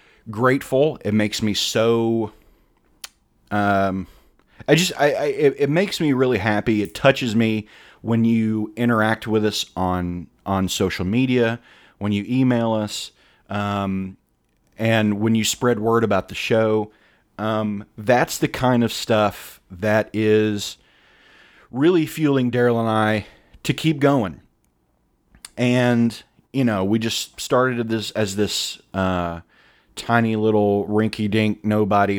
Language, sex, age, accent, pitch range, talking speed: English, male, 30-49, American, 105-125 Hz, 130 wpm